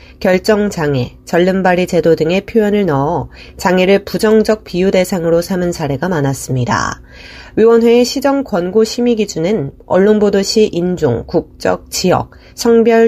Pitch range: 165-215 Hz